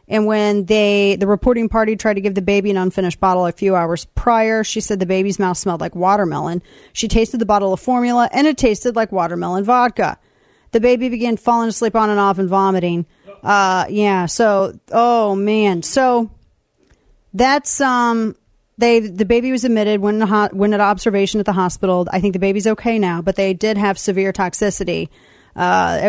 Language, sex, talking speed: English, female, 190 wpm